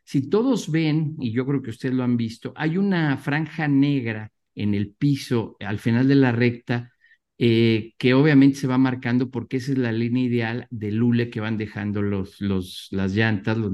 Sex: male